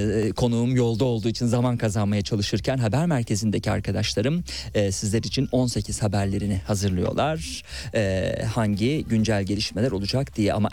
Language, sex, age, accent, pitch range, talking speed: Turkish, male, 40-59, native, 105-125 Hz, 130 wpm